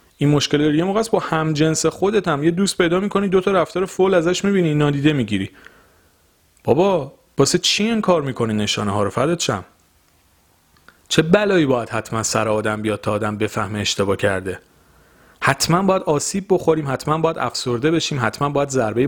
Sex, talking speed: male, 165 wpm